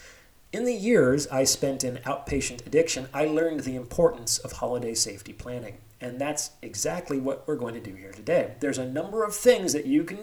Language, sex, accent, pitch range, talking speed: English, male, American, 125-170 Hz, 200 wpm